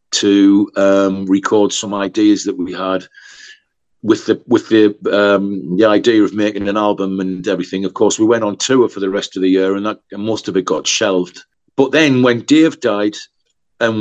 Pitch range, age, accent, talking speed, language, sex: 95-110 Hz, 50-69, British, 200 wpm, English, male